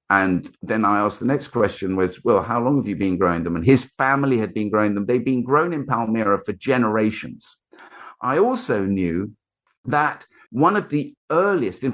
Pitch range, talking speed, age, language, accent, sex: 105-135 Hz, 195 wpm, 50-69, English, British, male